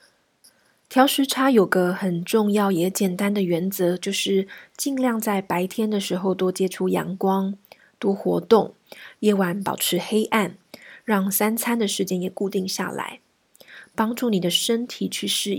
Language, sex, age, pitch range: Chinese, female, 20-39, 185-215 Hz